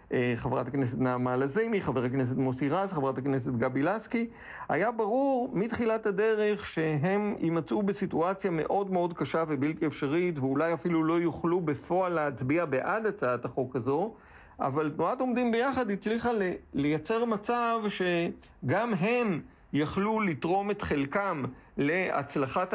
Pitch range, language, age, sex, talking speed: 145-210 Hz, Hebrew, 50-69, male, 125 wpm